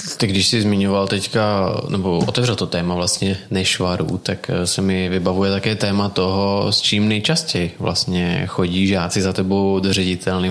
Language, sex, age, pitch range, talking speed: Czech, male, 20-39, 95-105 Hz, 155 wpm